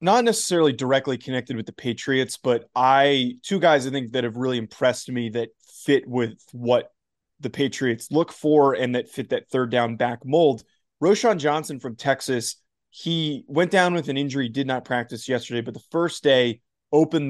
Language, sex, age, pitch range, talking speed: English, male, 20-39, 125-145 Hz, 185 wpm